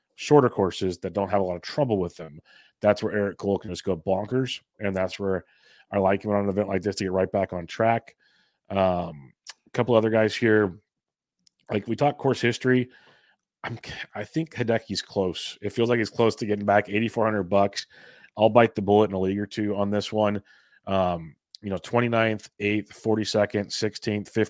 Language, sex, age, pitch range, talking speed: English, male, 30-49, 100-115 Hz, 200 wpm